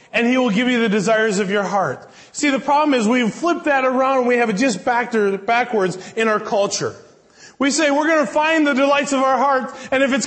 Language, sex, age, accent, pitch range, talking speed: English, male, 20-39, American, 250-315 Hz, 250 wpm